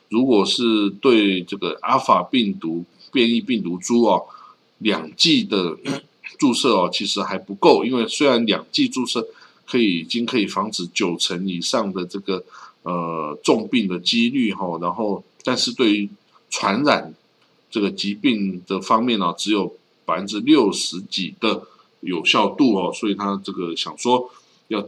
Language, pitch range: Chinese, 95-145 Hz